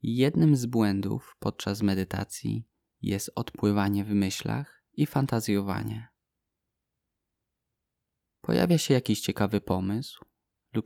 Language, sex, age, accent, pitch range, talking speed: Polish, male, 20-39, native, 100-120 Hz, 95 wpm